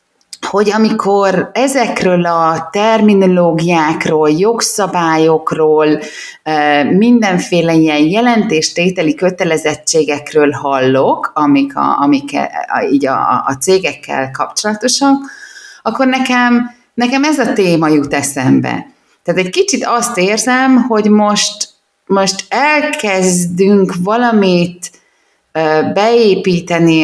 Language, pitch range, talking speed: Hungarian, 160-230 Hz, 80 wpm